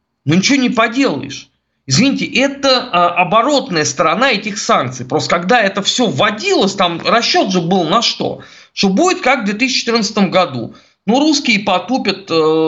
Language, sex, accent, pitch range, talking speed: Russian, male, native, 160-245 Hz, 140 wpm